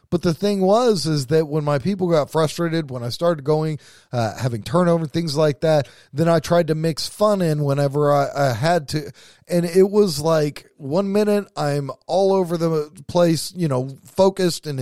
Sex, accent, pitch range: male, American, 145-195 Hz